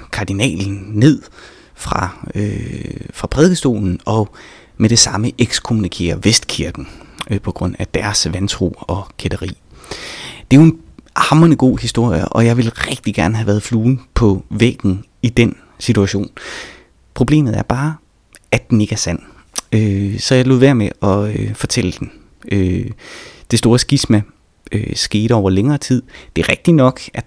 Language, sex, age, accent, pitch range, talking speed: Danish, male, 30-49, native, 95-120 Hz, 160 wpm